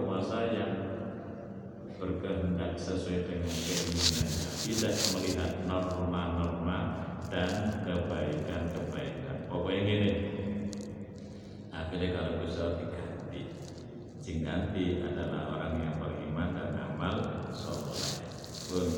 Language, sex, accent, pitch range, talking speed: Indonesian, male, native, 85-105 Hz, 80 wpm